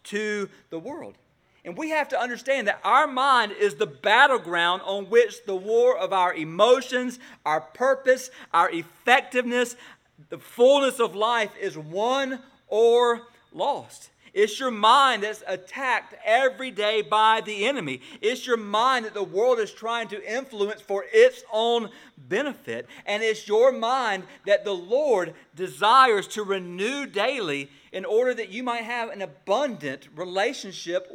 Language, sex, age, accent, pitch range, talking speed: English, male, 40-59, American, 190-260 Hz, 150 wpm